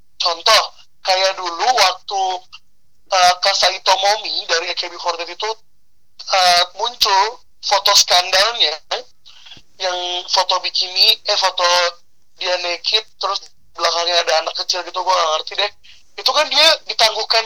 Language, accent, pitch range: Indonesian, native, 180-225 Hz